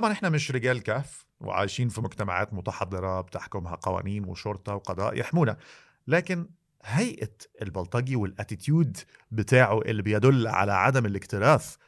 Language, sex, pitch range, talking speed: Arabic, male, 105-140 Hz, 120 wpm